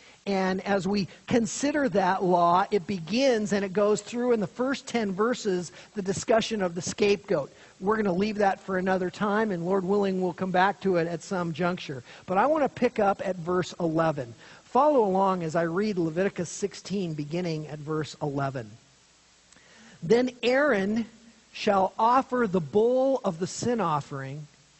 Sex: male